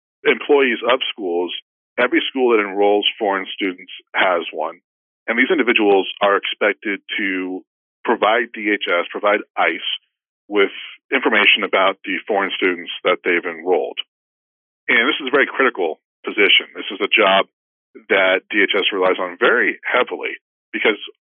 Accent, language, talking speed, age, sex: American, English, 135 wpm, 40-59, male